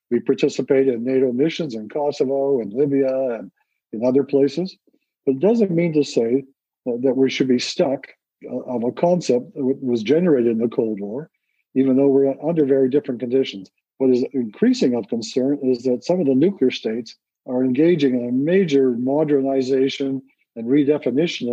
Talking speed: 170 wpm